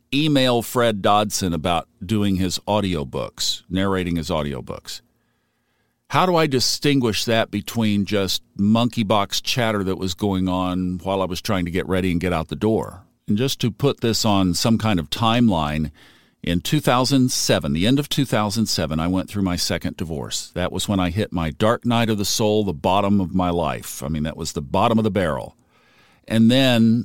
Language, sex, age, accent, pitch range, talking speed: English, male, 50-69, American, 90-115 Hz, 190 wpm